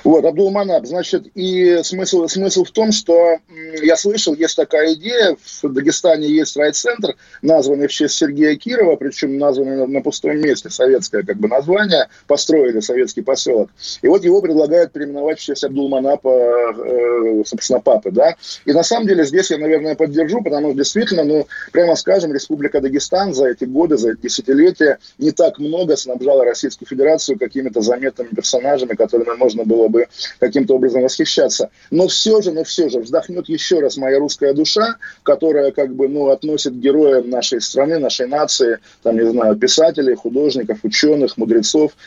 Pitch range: 135-185 Hz